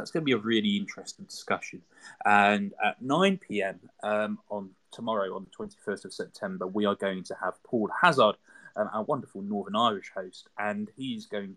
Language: English